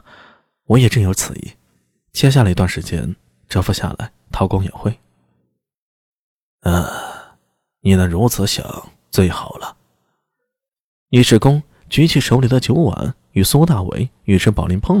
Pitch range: 95-145 Hz